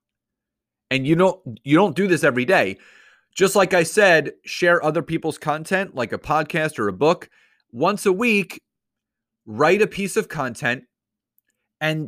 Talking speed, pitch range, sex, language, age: 155 wpm, 130-200 Hz, male, English, 30-49